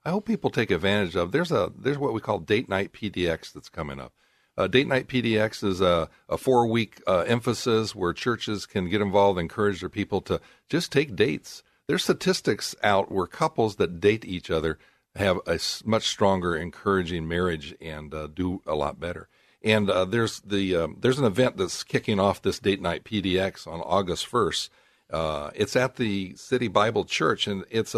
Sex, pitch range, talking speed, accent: male, 90-115 Hz, 190 wpm, American